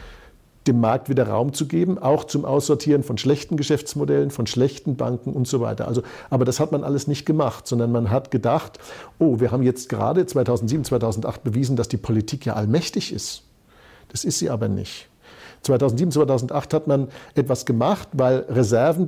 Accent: German